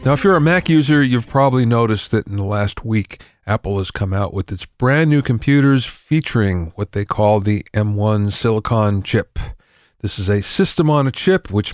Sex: male